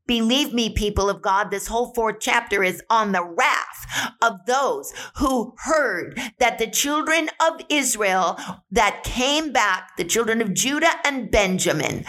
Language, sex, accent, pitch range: English, female, American, 195-250 Hz